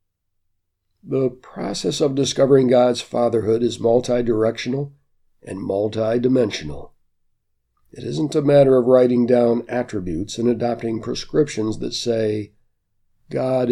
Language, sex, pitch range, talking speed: English, male, 100-130 Hz, 105 wpm